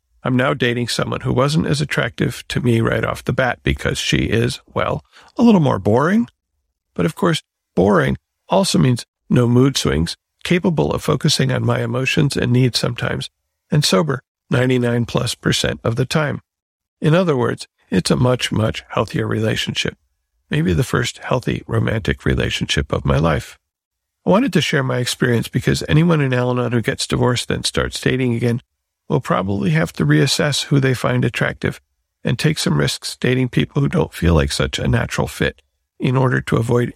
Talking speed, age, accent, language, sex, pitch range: 180 wpm, 50-69, American, English, male, 85-140 Hz